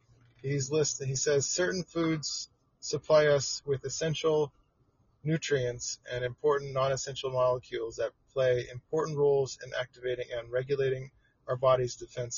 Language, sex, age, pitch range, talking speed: English, male, 30-49, 125-145 Hz, 125 wpm